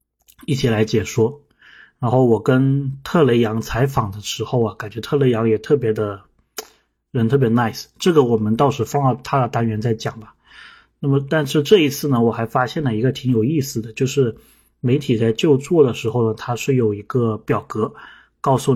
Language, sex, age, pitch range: Chinese, male, 20-39, 110-140 Hz